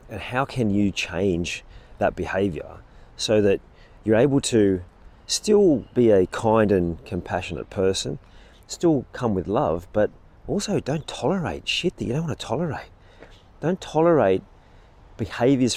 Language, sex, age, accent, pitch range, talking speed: English, male, 30-49, Australian, 85-125 Hz, 140 wpm